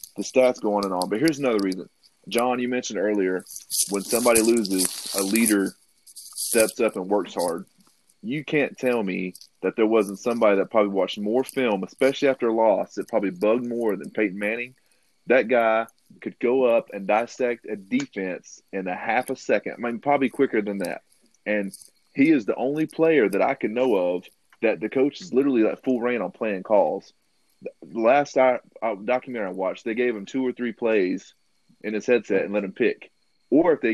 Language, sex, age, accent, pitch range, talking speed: English, male, 30-49, American, 105-135 Hz, 200 wpm